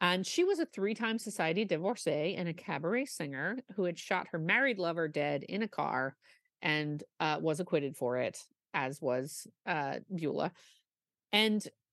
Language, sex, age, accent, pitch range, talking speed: English, female, 40-59, American, 145-190 Hz, 160 wpm